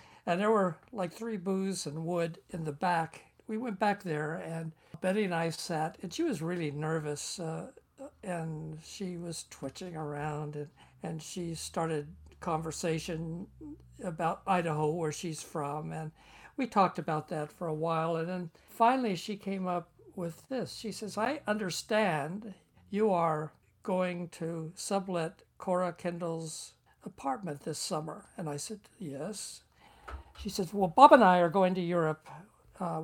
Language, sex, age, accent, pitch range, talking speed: English, male, 60-79, American, 160-190 Hz, 155 wpm